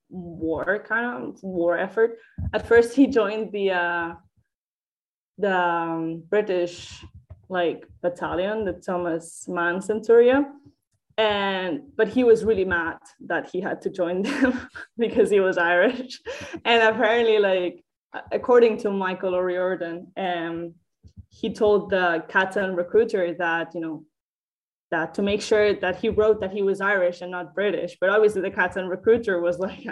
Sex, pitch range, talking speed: female, 175-225 Hz, 145 wpm